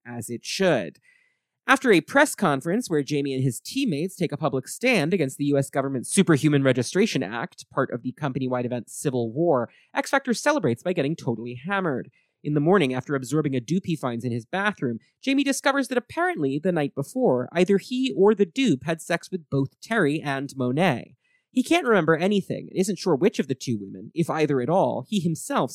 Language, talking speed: English, 200 wpm